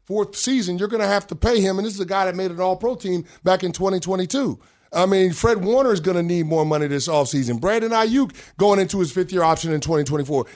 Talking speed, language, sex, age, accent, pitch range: 245 wpm, English, male, 30-49, American, 145-195 Hz